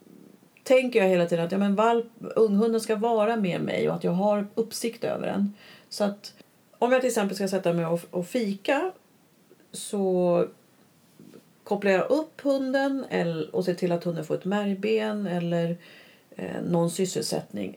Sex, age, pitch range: female, 40-59, 175-220 Hz